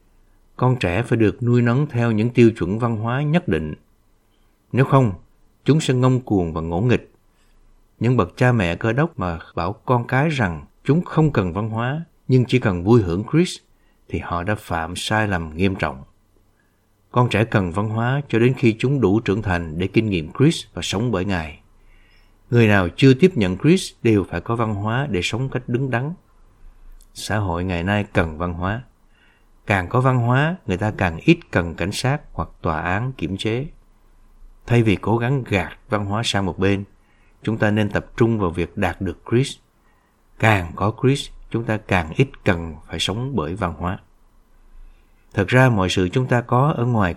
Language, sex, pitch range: Vietnamese, male, 90-125 Hz